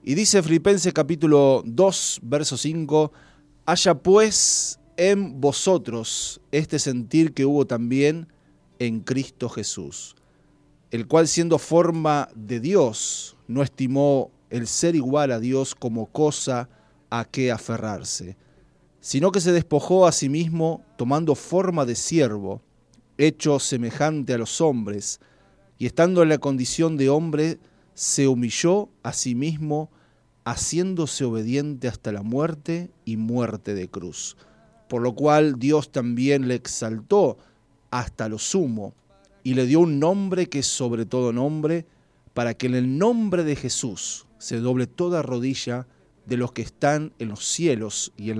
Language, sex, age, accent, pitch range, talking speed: Spanish, male, 30-49, Argentinian, 120-155 Hz, 140 wpm